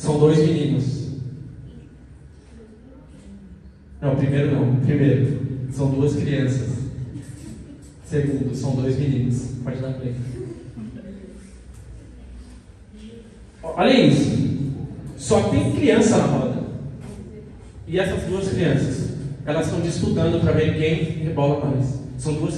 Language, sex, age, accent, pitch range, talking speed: Portuguese, male, 20-39, Brazilian, 125-155 Hz, 105 wpm